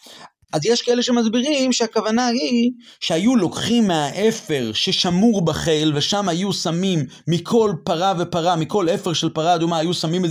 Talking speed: 145 wpm